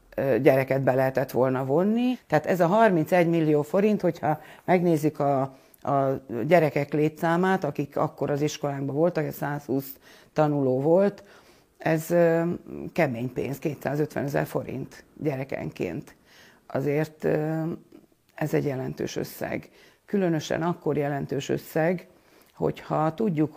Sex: female